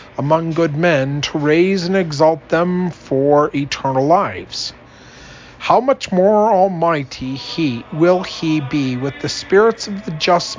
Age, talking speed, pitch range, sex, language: 40-59, 140 wpm, 135-175 Hz, male, English